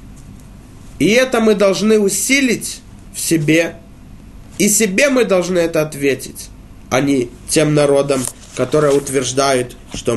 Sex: male